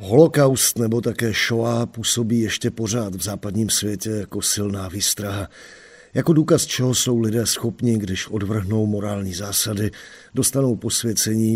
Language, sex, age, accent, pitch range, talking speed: Czech, male, 50-69, native, 95-115 Hz, 130 wpm